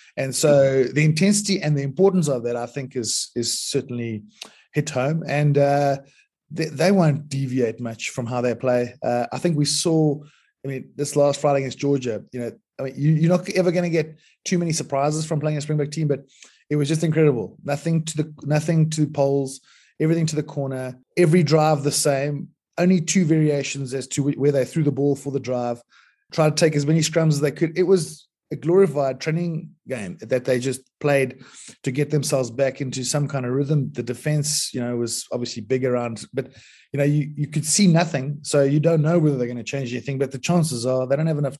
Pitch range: 130-155 Hz